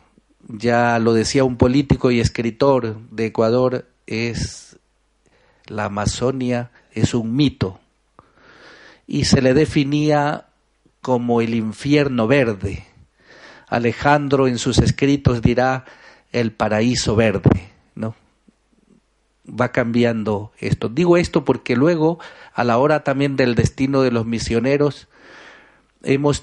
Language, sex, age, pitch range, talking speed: Spanish, male, 50-69, 110-135 Hz, 110 wpm